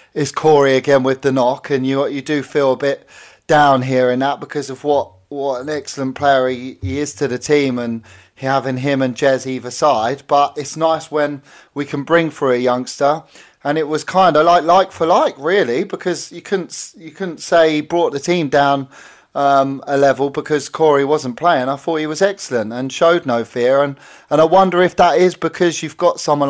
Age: 30-49